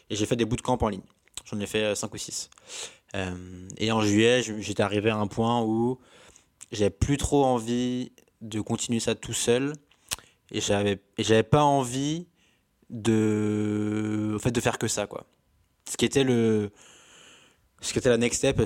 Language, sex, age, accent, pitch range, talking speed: French, male, 20-39, French, 105-125 Hz, 185 wpm